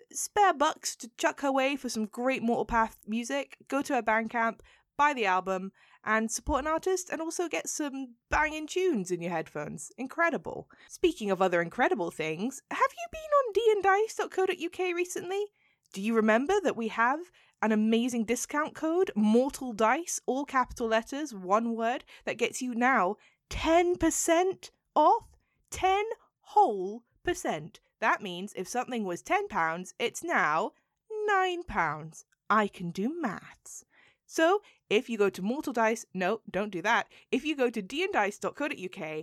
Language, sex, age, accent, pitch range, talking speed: English, female, 20-39, British, 195-295 Hz, 155 wpm